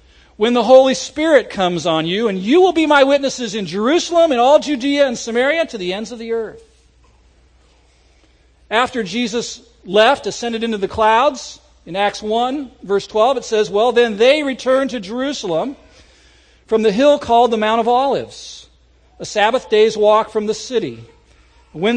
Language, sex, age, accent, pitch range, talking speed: English, male, 50-69, American, 210-275 Hz, 170 wpm